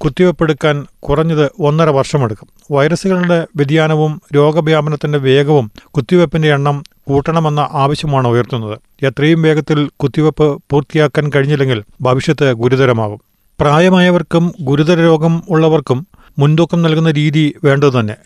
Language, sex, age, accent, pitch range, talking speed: Malayalam, male, 40-59, native, 135-155 Hz, 90 wpm